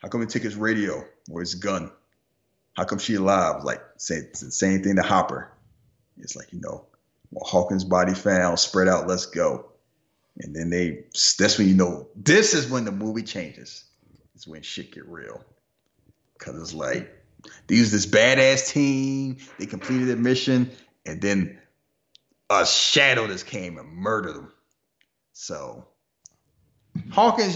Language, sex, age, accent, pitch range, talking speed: English, male, 30-49, American, 90-135 Hz, 165 wpm